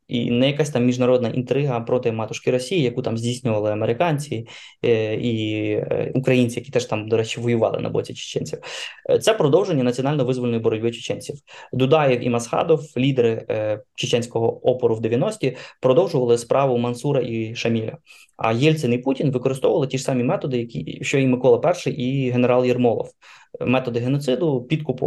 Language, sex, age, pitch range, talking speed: Ukrainian, male, 20-39, 120-140 Hz, 150 wpm